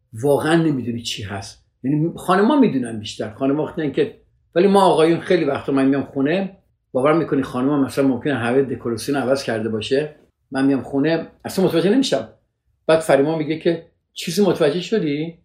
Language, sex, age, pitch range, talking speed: Persian, male, 50-69, 115-165 Hz, 170 wpm